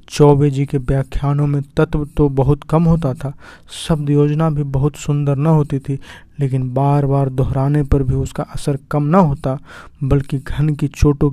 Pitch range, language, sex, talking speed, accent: 140-155 Hz, Hindi, male, 180 wpm, native